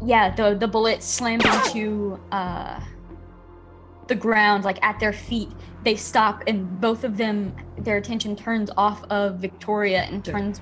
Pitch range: 195-220 Hz